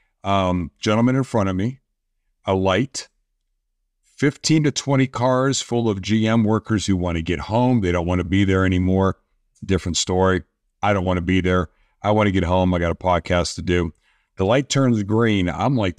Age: 50-69